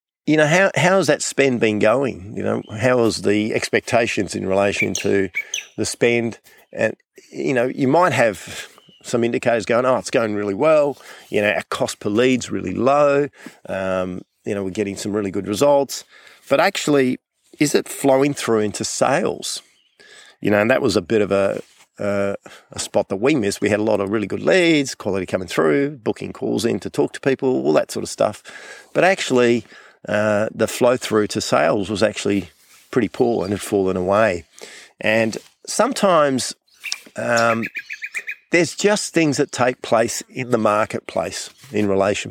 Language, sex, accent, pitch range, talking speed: English, male, Australian, 100-130 Hz, 180 wpm